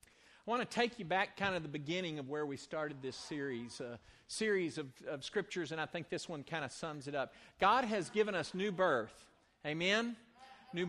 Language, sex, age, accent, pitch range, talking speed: English, male, 50-69, American, 175-225 Hz, 220 wpm